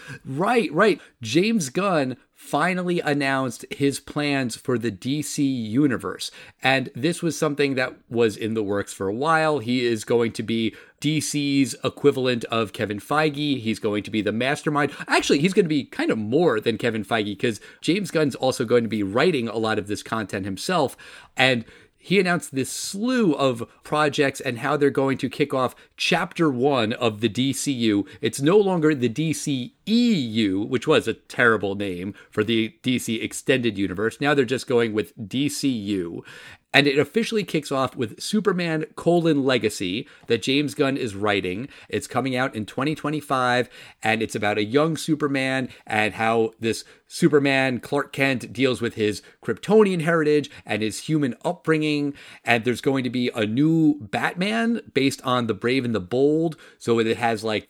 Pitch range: 115-150 Hz